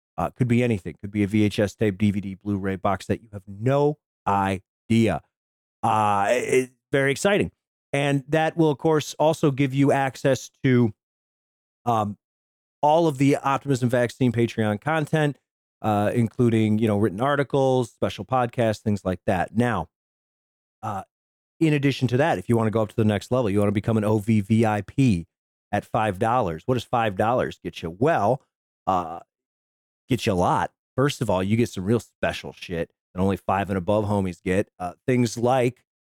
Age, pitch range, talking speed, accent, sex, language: 40-59, 100-135 Hz, 175 wpm, American, male, English